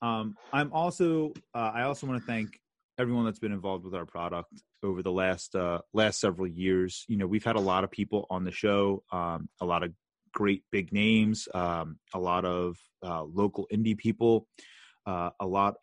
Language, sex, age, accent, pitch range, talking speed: English, male, 30-49, American, 90-110 Hz, 195 wpm